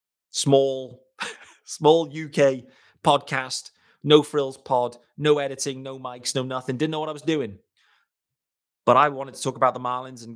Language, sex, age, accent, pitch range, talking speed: English, male, 30-49, British, 115-135 Hz, 160 wpm